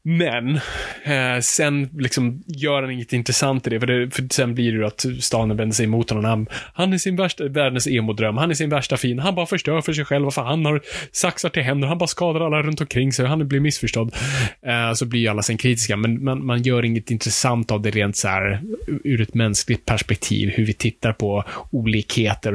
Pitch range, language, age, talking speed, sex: 105-130 Hz, Swedish, 20-39, 225 wpm, male